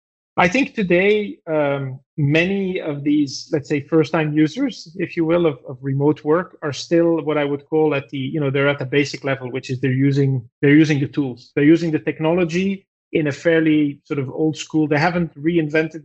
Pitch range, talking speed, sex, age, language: 135-160 Hz, 200 wpm, male, 30-49, English